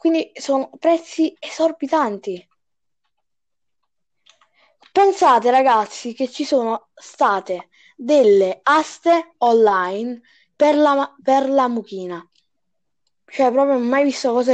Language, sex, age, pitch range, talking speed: Italian, female, 20-39, 215-300 Hz, 100 wpm